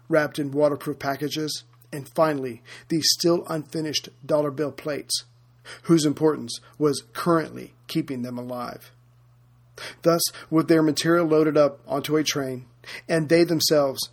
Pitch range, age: 125-155 Hz, 40-59